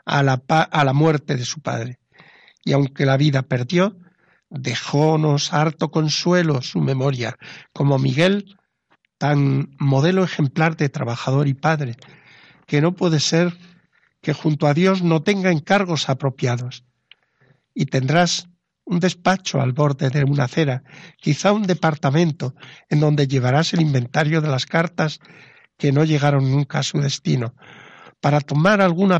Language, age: Spanish, 60-79